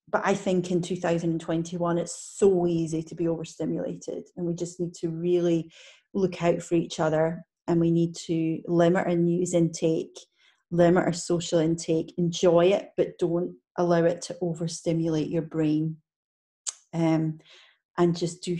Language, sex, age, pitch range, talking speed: English, female, 30-49, 165-190 Hz, 155 wpm